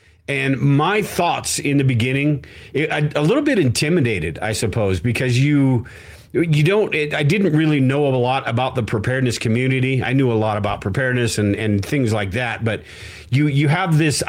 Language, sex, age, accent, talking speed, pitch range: English, male, 40-59, American, 175 wpm, 115-140 Hz